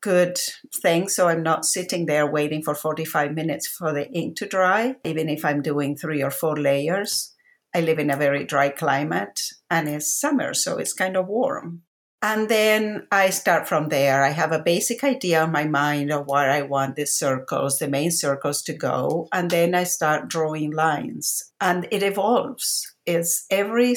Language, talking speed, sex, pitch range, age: English, 190 wpm, female, 145-185 Hz, 50-69